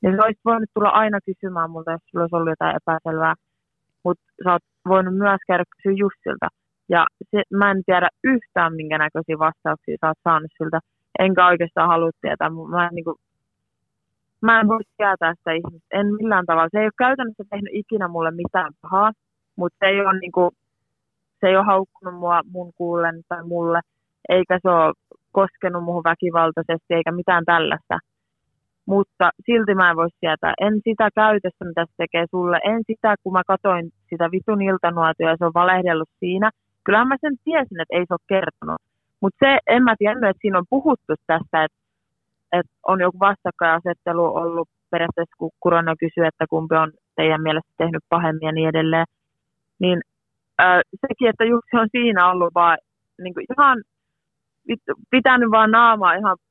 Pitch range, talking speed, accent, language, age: 165-200 Hz, 170 wpm, native, Finnish, 20-39